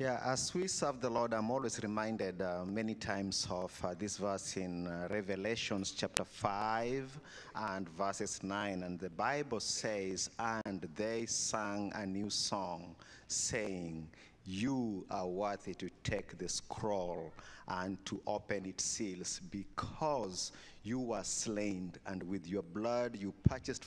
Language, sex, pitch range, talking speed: English, male, 100-120 Hz, 145 wpm